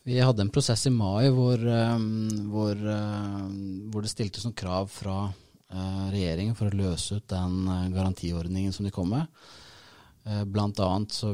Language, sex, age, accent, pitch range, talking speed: English, male, 30-49, Norwegian, 90-105 Hz, 145 wpm